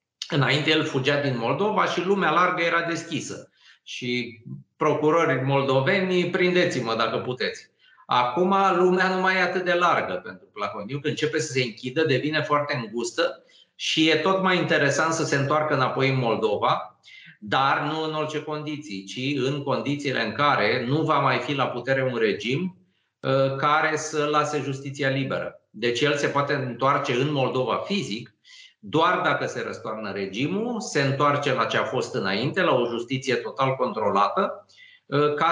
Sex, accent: male, native